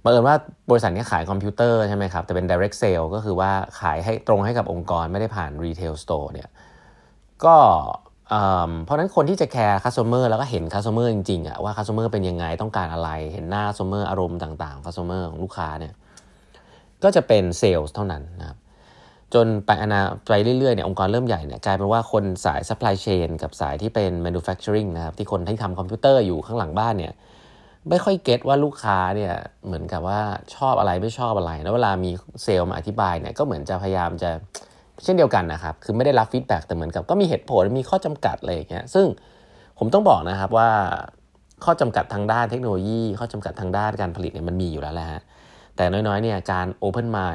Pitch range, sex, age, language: 90-110 Hz, male, 20-39, Thai